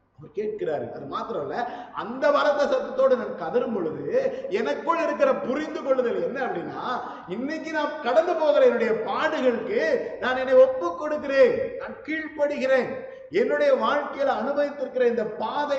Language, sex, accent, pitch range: Tamil, male, native, 210-315 Hz